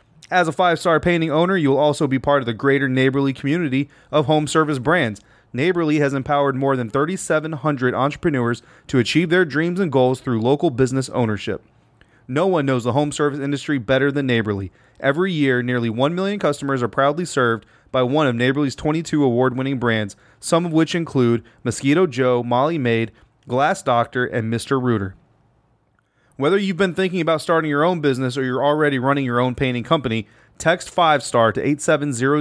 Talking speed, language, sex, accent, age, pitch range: 180 wpm, English, male, American, 30-49, 120-155 Hz